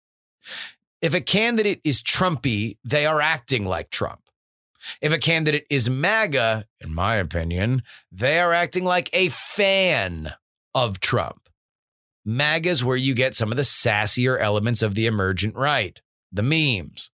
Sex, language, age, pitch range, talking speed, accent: male, English, 30-49, 105-150 Hz, 145 wpm, American